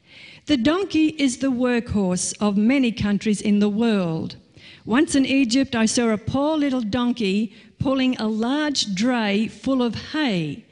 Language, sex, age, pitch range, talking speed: English, female, 50-69, 205-255 Hz, 150 wpm